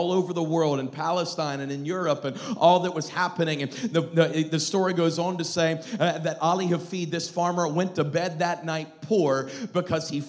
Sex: male